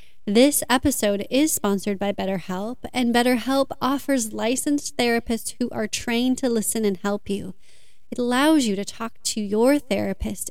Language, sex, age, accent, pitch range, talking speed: English, female, 30-49, American, 210-255 Hz, 155 wpm